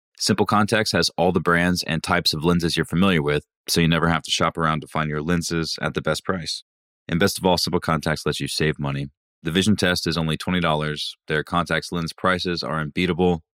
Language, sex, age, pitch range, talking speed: English, male, 20-39, 70-80 Hz, 220 wpm